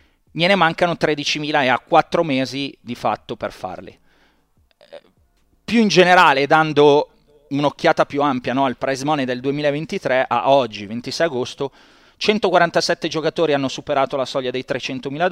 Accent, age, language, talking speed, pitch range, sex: native, 30-49, Italian, 140 wpm, 125-165 Hz, male